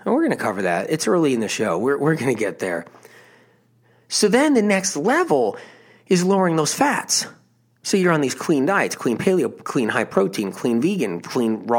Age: 30-49